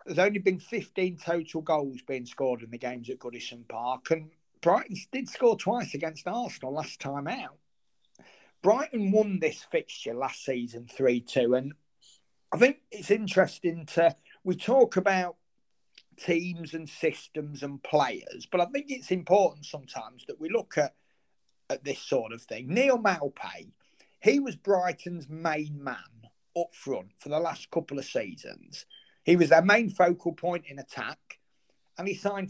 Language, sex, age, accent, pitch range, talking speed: English, male, 40-59, British, 145-190 Hz, 160 wpm